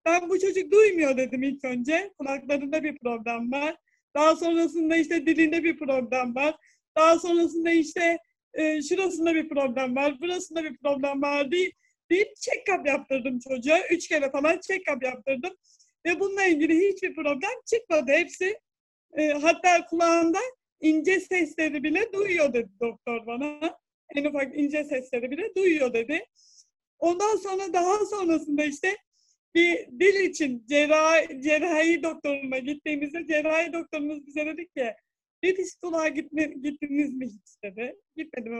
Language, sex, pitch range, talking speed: Turkish, female, 270-335 Hz, 140 wpm